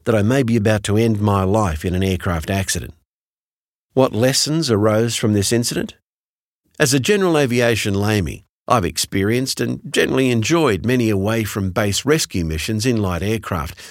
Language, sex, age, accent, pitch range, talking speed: English, male, 50-69, Australian, 95-125 Hz, 155 wpm